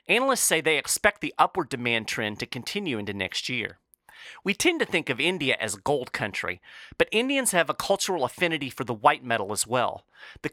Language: English